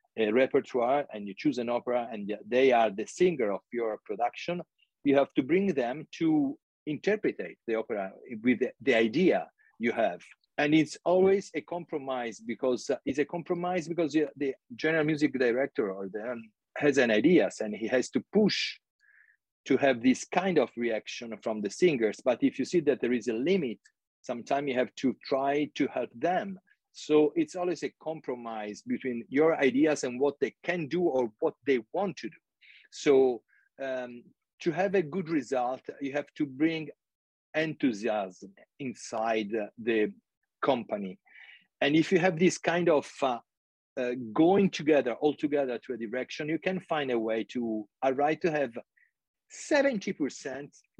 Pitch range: 125-180 Hz